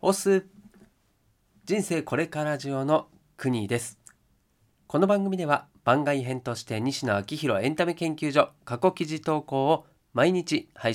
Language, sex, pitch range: Japanese, male, 110-160 Hz